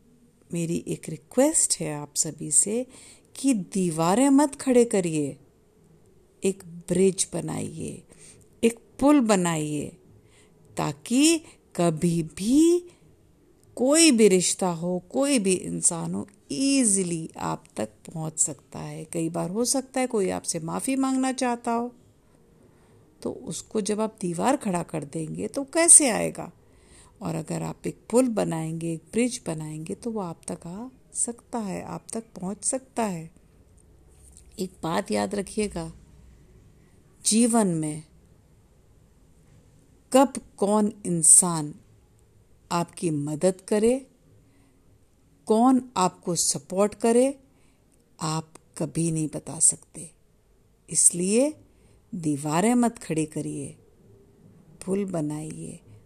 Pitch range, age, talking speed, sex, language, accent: 160-235 Hz, 50-69, 115 wpm, female, Hindi, native